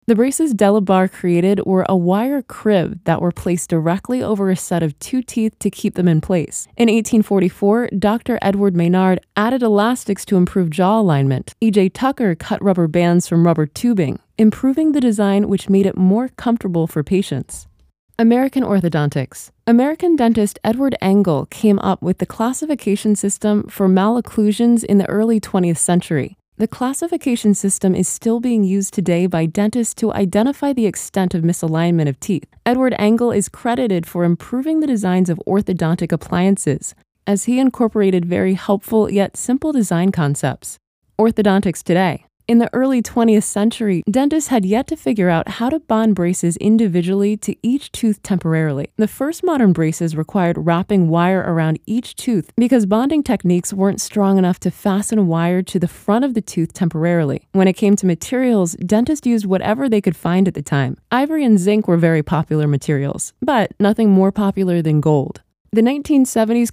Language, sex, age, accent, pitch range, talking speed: English, female, 20-39, American, 175-225 Hz, 170 wpm